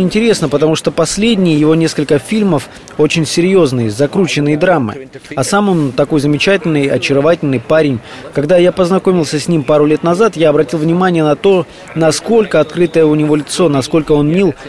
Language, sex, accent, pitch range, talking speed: Russian, male, native, 145-180 Hz, 160 wpm